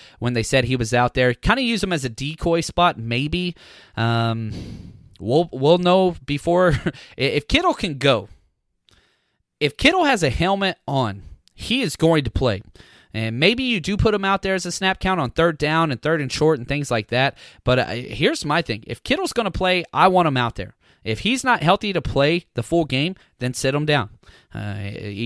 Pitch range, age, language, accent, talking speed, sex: 110-160 Hz, 30-49, English, American, 210 wpm, male